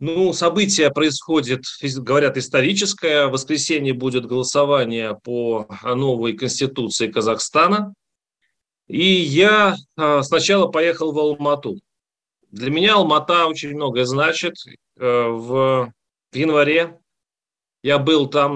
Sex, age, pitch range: male, 30-49, 130-160 Hz